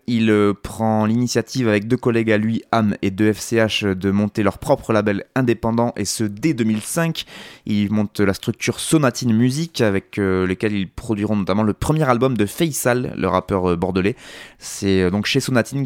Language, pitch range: French, 100-120 Hz